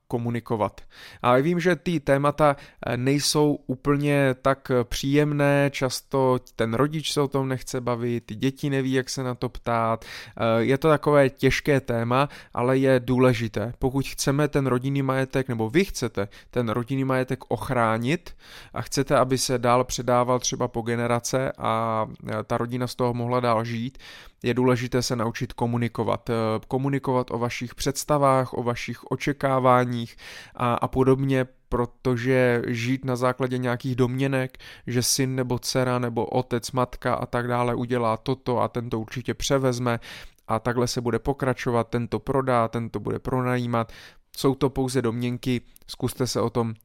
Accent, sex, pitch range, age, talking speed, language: native, male, 120-135 Hz, 20-39, 150 wpm, Czech